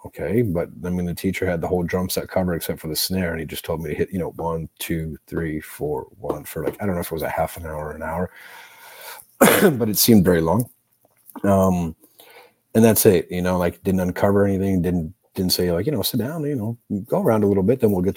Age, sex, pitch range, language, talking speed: 40-59, male, 85-95 Hz, English, 260 wpm